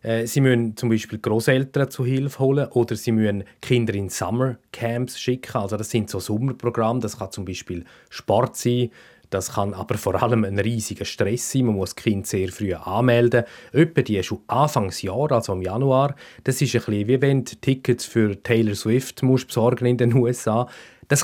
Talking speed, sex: 180 wpm, male